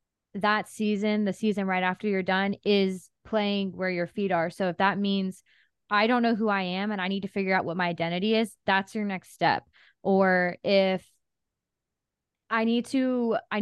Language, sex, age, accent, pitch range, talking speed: English, female, 20-39, American, 180-210 Hz, 195 wpm